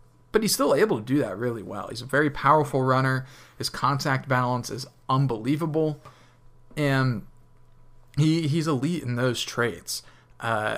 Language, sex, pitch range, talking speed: English, male, 110-130 Hz, 150 wpm